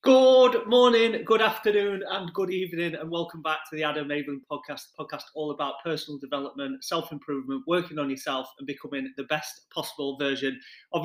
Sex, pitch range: male, 135-155 Hz